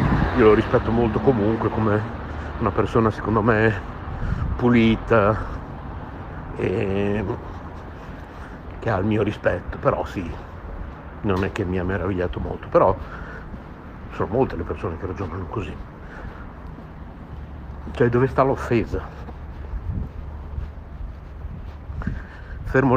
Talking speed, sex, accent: 100 wpm, male, native